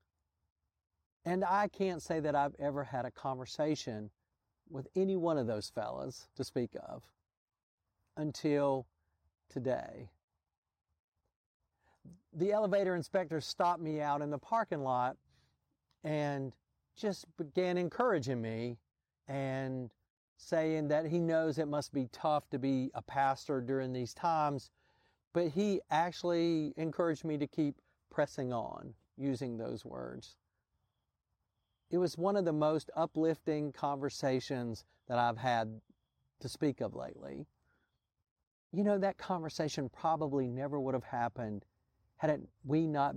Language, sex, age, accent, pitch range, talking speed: English, male, 50-69, American, 115-160 Hz, 125 wpm